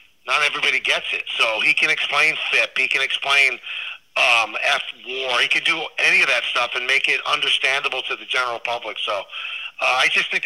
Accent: American